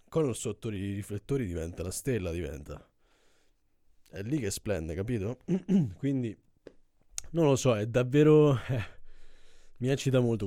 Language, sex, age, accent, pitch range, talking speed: Italian, male, 20-39, native, 95-115 Hz, 130 wpm